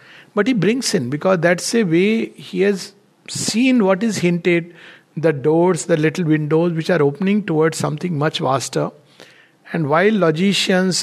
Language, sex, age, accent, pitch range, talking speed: English, male, 60-79, Indian, 150-190 Hz, 160 wpm